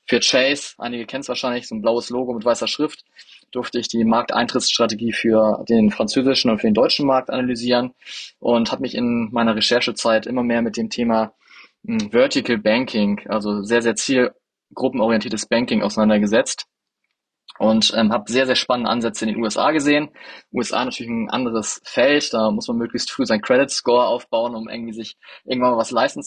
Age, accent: 20-39, German